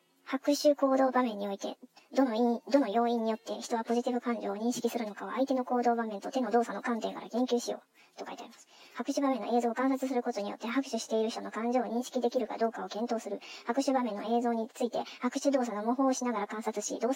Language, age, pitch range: Japanese, 40-59, 225-265 Hz